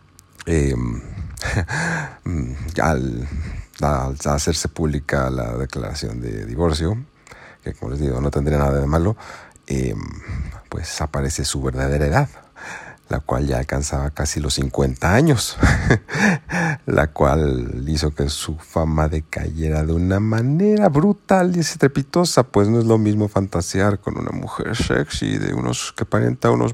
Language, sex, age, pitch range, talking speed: Spanish, male, 50-69, 70-100 Hz, 135 wpm